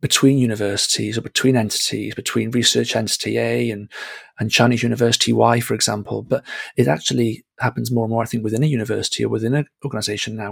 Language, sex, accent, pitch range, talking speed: English, male, British, 110-125 Hz, 190 wpm